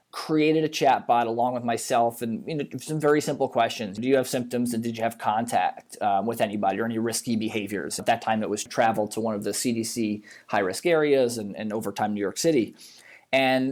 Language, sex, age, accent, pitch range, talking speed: English, male, 20-39, American, 115-135 Hz, 225 wpm